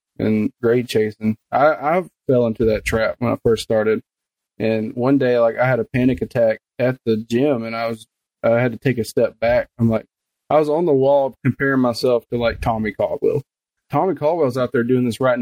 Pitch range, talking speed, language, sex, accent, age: 115-140 Hz, 215 wpm, English, male, American, 20-39